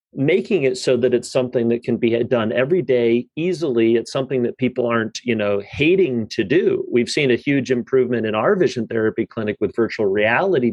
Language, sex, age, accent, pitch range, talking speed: English, male, 40-59, American, 115-130 Hz, 200 wpm